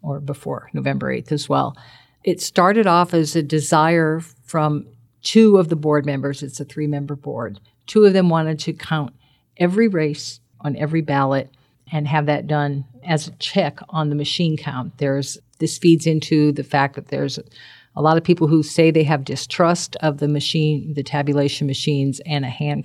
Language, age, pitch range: English, 50-69, 145-170 Hz